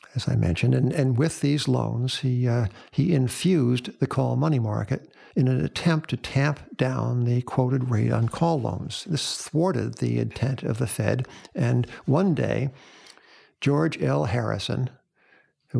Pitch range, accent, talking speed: 115-130 Hz, American, 160 wpm